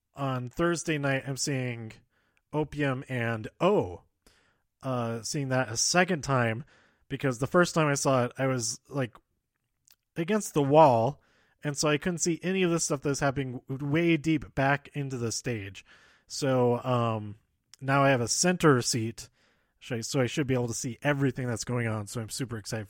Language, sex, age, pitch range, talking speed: English, male, 30-49, 130-165 Hz, 180 wpm